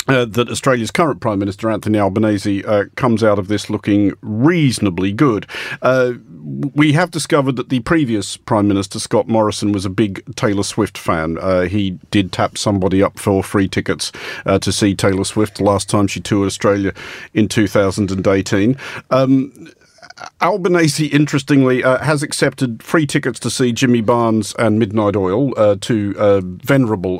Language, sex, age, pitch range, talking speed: English, male, 50-69, 100-130 Hz, 160 wpm